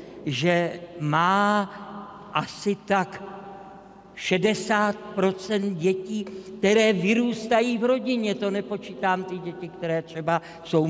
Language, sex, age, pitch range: Czech, male, 50-69, 170-210 Hz